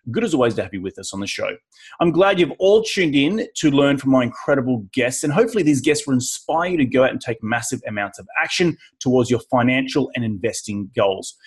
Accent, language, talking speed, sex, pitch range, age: Australian, English, 235 wpm, male, 110-150 Hz, 30-49